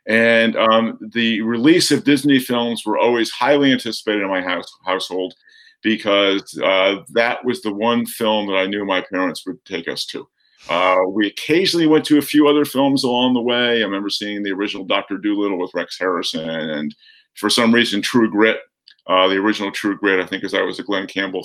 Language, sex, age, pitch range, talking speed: English, male, 50-69, 105-135 Hz, 200 wpm